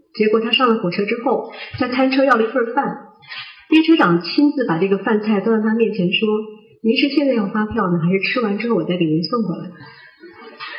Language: Chinese